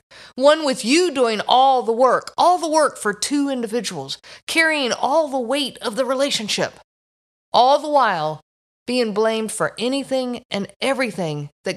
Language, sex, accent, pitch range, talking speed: English, female, American, 210-280 Hz, 155 wpm